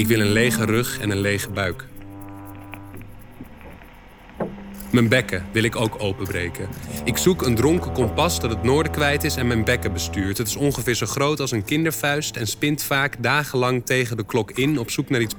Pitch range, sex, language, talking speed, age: 100-140 Hz, male, Dutch, 190 wpm, 30-49